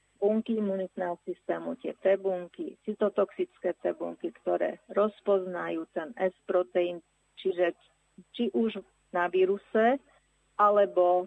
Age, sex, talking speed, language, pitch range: 40-59, female, 95 wpm, Slovak, 185-225 Hz